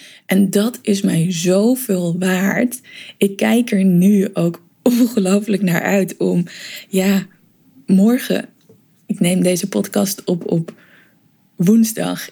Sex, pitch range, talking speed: female, 185-210 Hz, 115 wpm